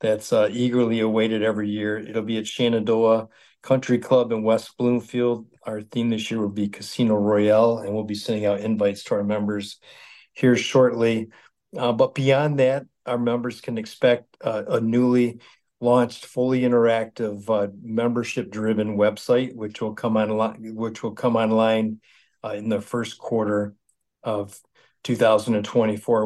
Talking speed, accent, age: 150 wpm, American, 50-69